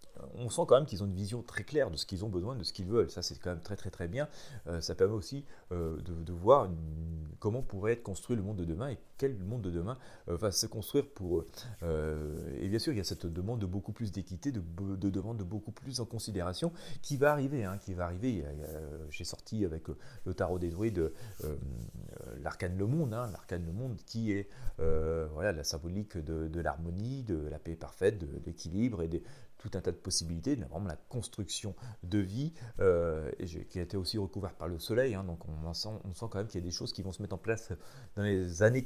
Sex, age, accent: male, 40-59, French